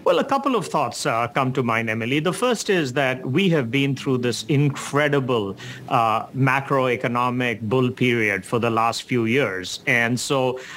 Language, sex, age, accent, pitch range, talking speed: English, male, 50-69, Indian, 120-145 Hz, 180 wpm